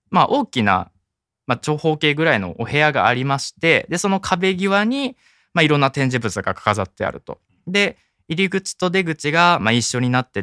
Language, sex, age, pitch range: Japanese, male, 20-39, 105-170 Hz